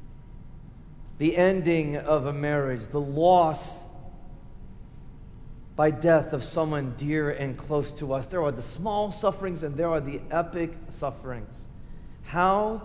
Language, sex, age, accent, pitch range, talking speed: English, male, 40-59, American, 145-185 Hz, 130 wpm